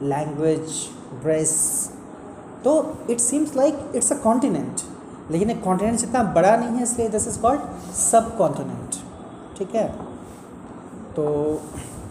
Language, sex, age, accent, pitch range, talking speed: Hindi, male, 30-49, native, 175-220 Hz, 120 wpm